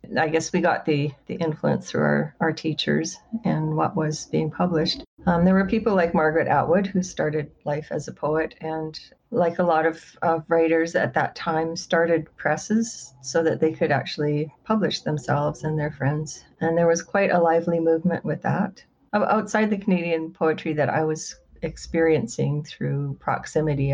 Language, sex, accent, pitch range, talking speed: English, female, American, 150-170 Hz, 175 wpm